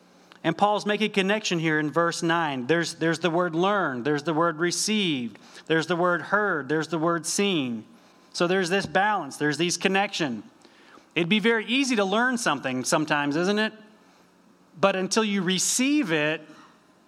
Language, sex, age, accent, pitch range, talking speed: English, male, 30-49, American, 150-200 Hz, 165 wpm